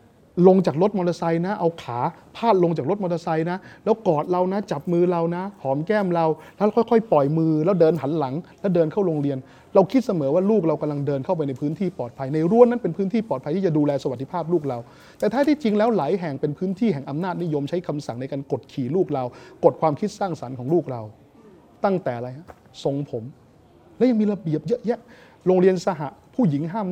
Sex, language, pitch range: male, Thai, 155-210 Hz